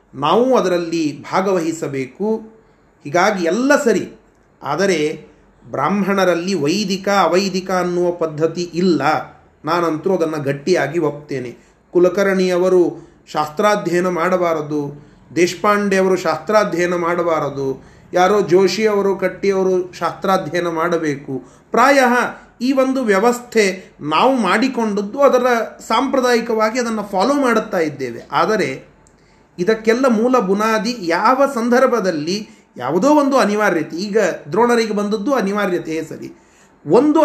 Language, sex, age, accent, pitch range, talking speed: Kannada, male, 30-49, native, 175-235 Hz, 90 wpm